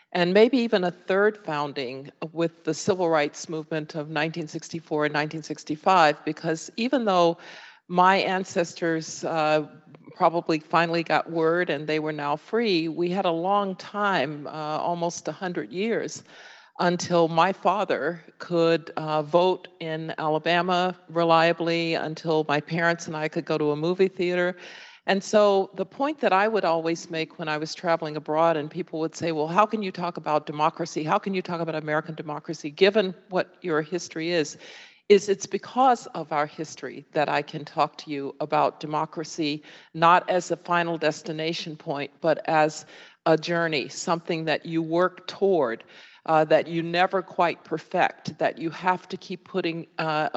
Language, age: English, 50-69